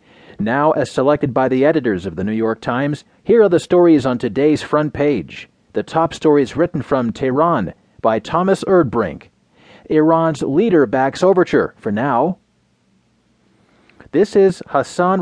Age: 40-59